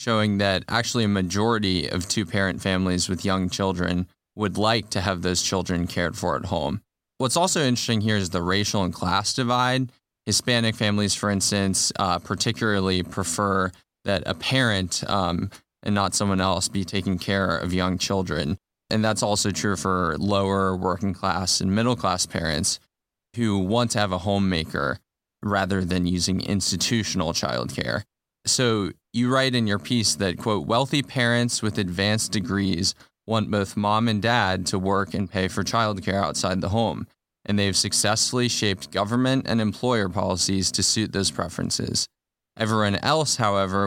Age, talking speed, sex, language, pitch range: 20-39, 160 wpm, male, English, 95-110 Hz